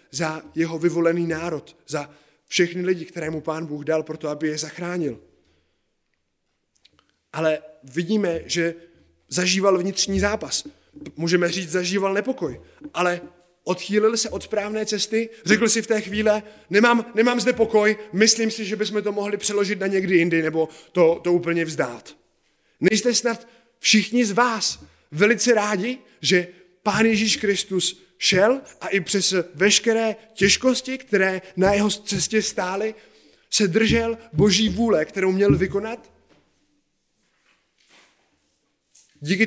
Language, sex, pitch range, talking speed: Czech, male, 170-220 Hz, 130 wpm